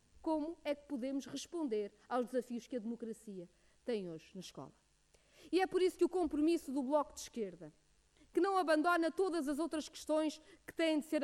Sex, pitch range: female, 240-310 Hz